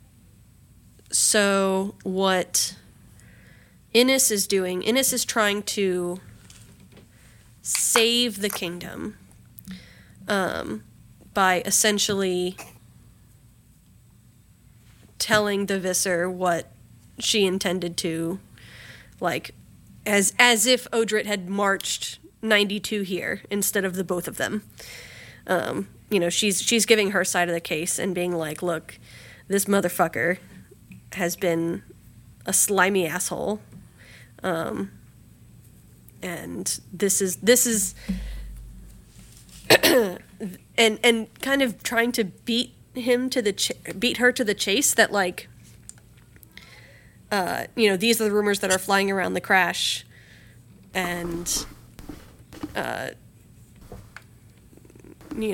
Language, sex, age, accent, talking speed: English, female, 30-49, American, 105 wpm